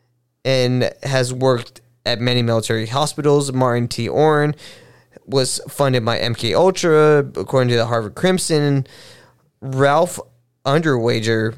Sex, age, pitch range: male, 20-39, 115-140 Hz